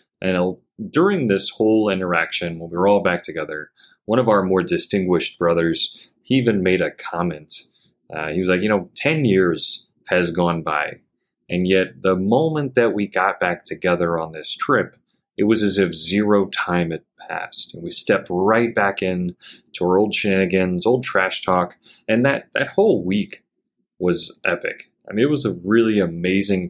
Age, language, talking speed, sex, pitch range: 30-49, English, 180 wpm, male, 85-100 Hz